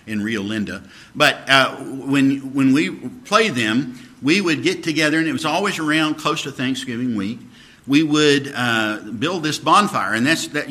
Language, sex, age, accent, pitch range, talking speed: English, male, 50-69, American, 115-140 Hz, 180 wpm